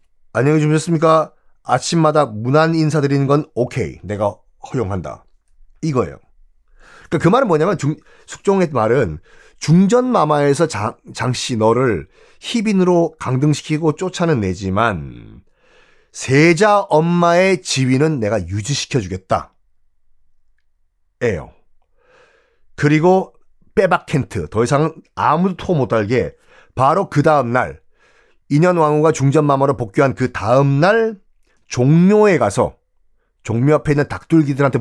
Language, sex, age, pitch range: Korean, male, 30-49, 120-170 Hz